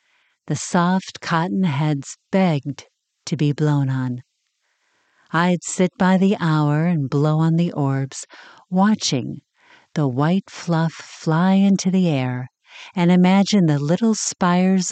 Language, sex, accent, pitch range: English, female, American, 145-200 Hz